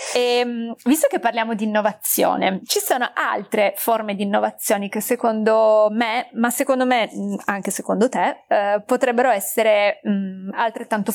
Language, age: Italian, 30-49